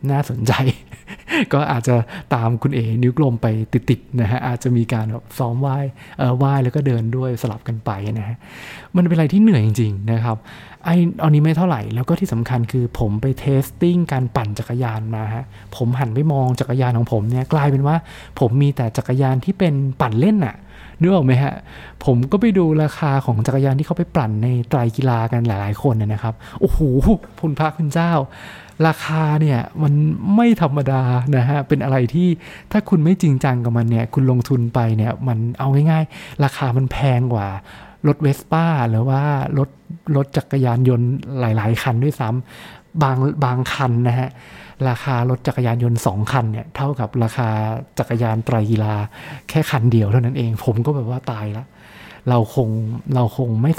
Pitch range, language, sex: 120-150 Hz, English, male